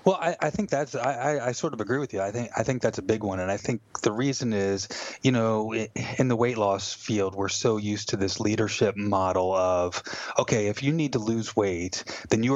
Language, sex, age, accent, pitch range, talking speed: English, male, 30-49, American, 100-125 Hz, 240 wpm